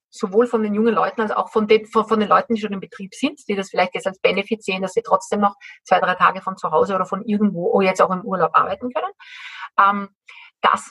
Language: German